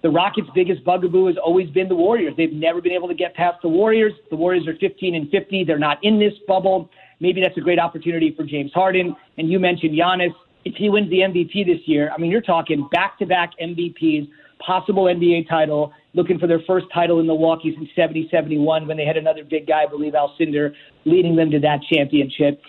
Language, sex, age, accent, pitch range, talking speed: English, male, 40-59, American, 160-195 Hz, 210 wpm